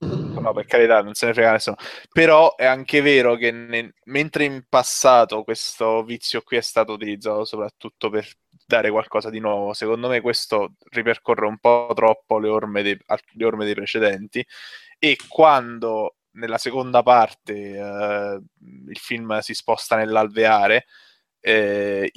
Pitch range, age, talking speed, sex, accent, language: 105-115 Hz, 20-39, 140 wpm, male, Italian, English